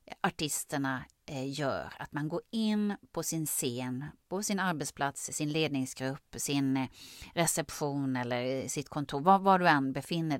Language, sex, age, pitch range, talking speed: Swedish, female, 30-49, 135-190 Hz, 135 wpm